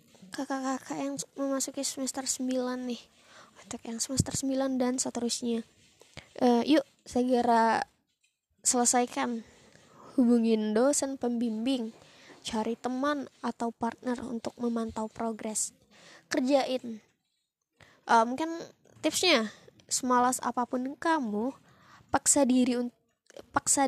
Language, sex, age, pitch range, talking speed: Indonesian, female, 20-39, 230-270 Hz, 90 wpm